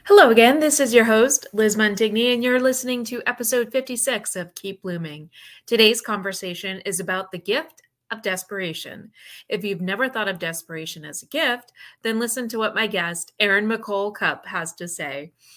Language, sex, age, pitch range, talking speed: English, female, 30-49, 180-240 Hz, 175 wpm